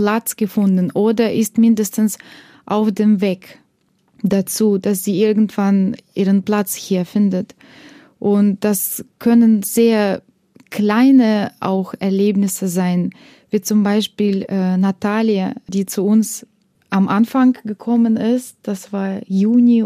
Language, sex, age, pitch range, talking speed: German, female, 20-39, 195-220 Hz, 120 wpm